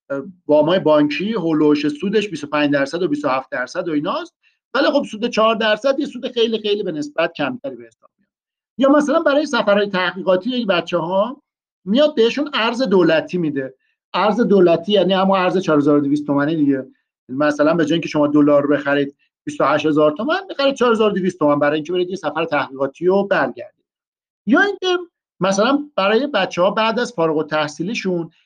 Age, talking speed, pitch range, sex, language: 50-69, 160 wpm, 155-235 Hz, male, Persian